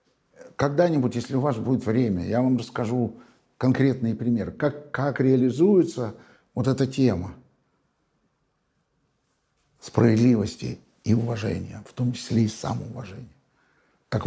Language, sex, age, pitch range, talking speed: Russian, male, 60-79, 105-130 Hz, 110 wpm